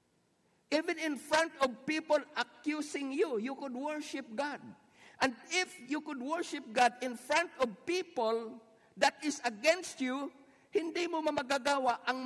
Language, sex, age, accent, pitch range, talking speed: Filipino, male, 50-69, native, 220-280 Hz, 140 wpm